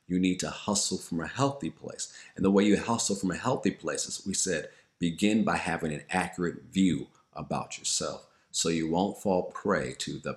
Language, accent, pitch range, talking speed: English, American, 80-95 Hz, 205 wpm